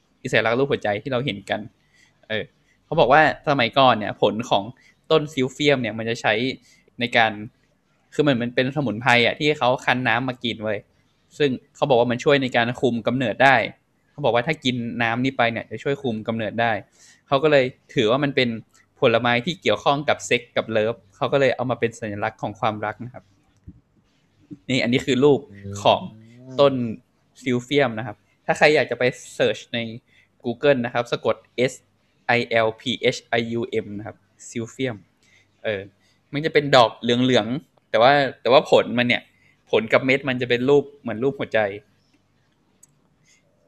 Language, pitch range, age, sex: Thai, 110-140 Hz, 20-39, male